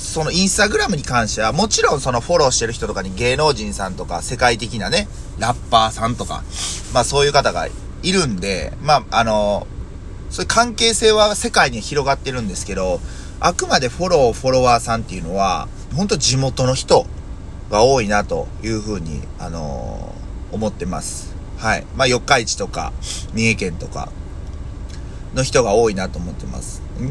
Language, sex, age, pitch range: Japanese, male, 30-49, 95-140 Hz